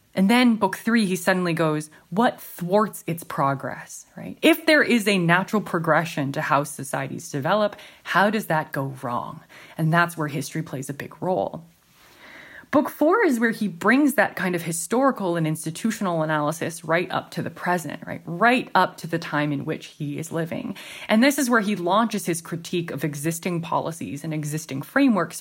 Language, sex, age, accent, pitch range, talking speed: English, female, 20-39, American, 150-190 Hz, 185 wpm